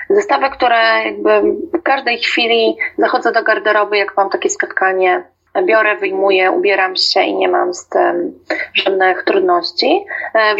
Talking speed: 140 wpm